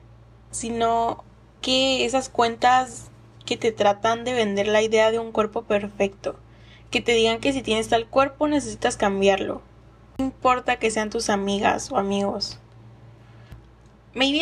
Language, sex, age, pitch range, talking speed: English, female, 10-29, 195-250 Hz, 140 wpm